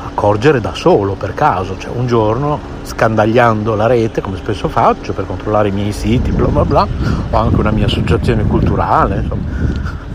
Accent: native